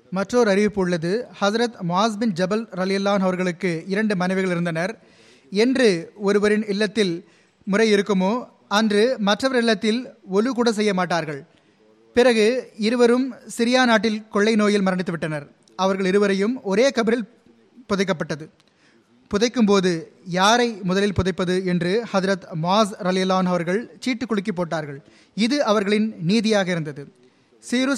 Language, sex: Tamil, male